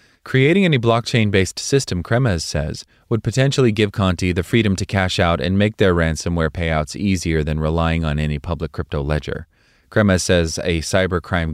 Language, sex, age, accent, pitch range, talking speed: English, male, 30-49, American, 80-105 Hz, 165 wpm